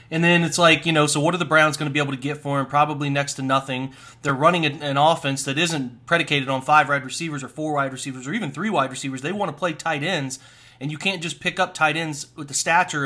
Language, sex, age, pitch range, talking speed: English, male, 30-49, 140-170 Hz, 275 wpm